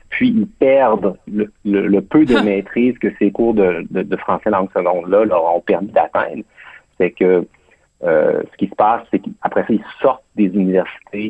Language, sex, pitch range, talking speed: French, male, 100-120 Hz, 190 wpm